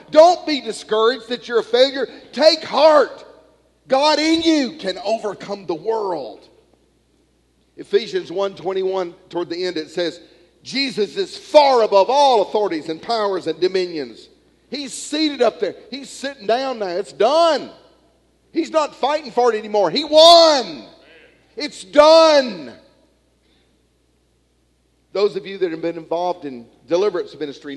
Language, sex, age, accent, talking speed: English, male, 50-69, American, 135 wpm